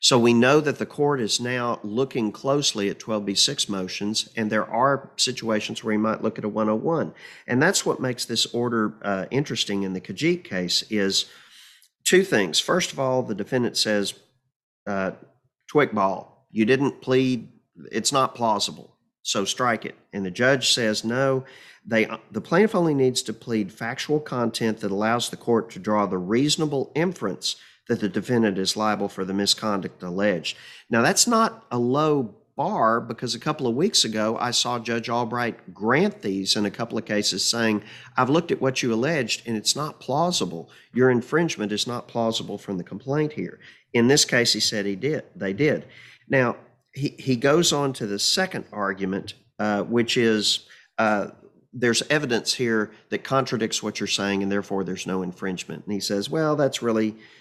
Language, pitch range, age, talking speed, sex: English, 105-130 Hz, 40-59, 180 wpm, male